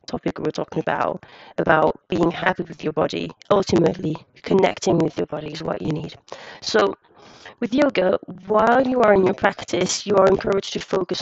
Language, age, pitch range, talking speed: English, 30-49, 165-190 Hz, 175 wpm